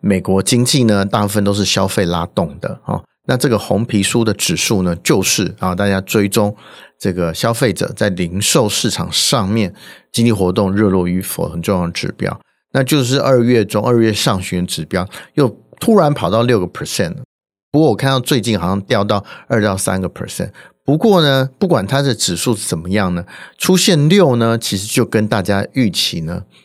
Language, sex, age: Chinese, male, 50-69